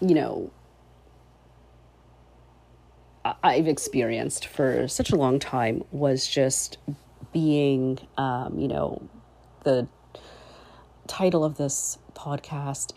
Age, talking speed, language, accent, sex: 40-59, 95 wpm, English, American, female